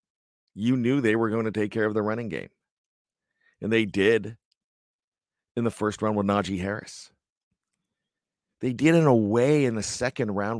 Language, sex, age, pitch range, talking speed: English, male, 50-69, 100-125 Hz, 175 wpm